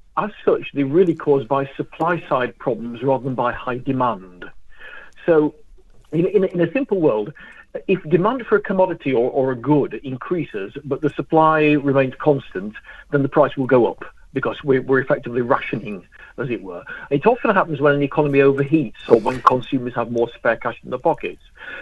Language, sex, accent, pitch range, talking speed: English, male, British, 130-165 Hz, 180 wpm